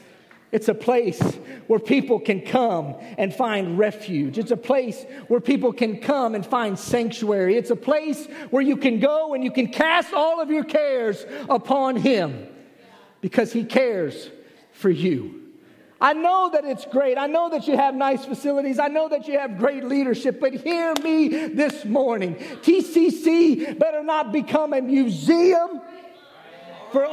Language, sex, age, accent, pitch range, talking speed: English, male, 40-59, American, 270-335 Hz, 160 wpm